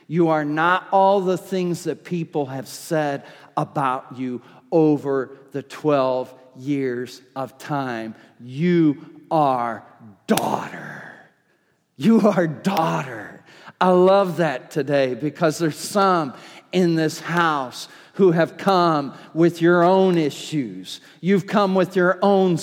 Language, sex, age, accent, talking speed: English, male, 50-69, American, 120 wpm